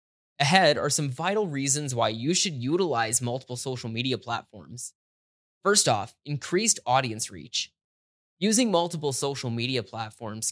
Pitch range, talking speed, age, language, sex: 120-165 Hz, 130 wpm, 20-39, English, male